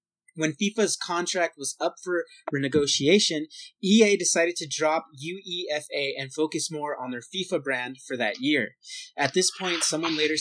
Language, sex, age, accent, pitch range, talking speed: English, male, 30-49, American, 145-180 Hz, 155 wpm